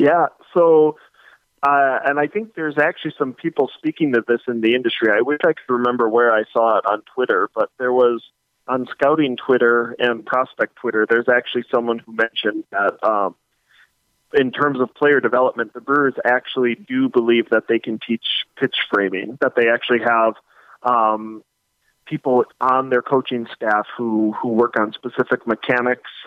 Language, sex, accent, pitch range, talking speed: English, male, American, 115-135 Hz, 170 wpm